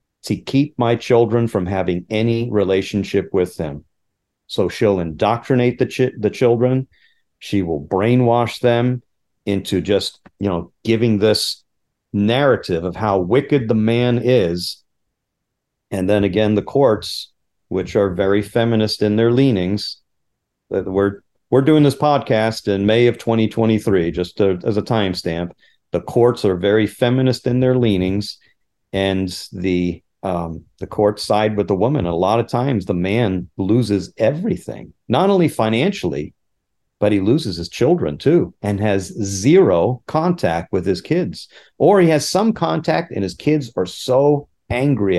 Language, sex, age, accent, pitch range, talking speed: English, male, 40-59, American, 95-120 Hz, 150 wpm